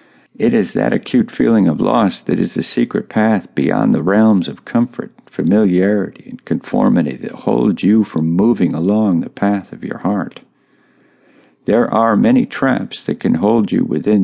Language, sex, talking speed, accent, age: English, male, 170 wpm, American, 50-69